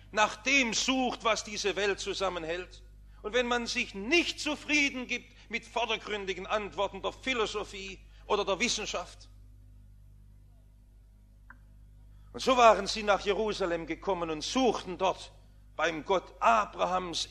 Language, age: English, 50-69